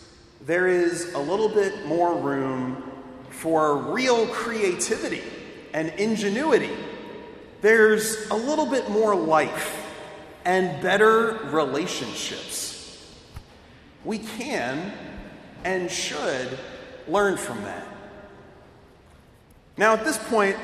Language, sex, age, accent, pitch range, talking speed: English, male, 40-59, American, 180-255 Hz, 95 wpm